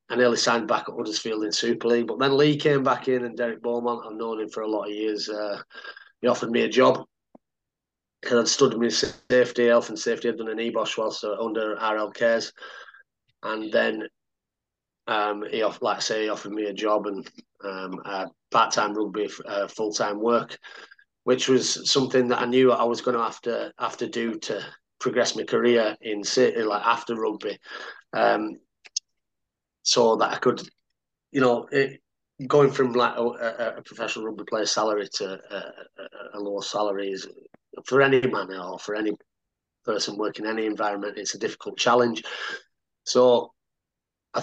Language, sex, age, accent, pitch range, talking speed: English, male, 30-49, British, 105-120 Hz, 180 wpm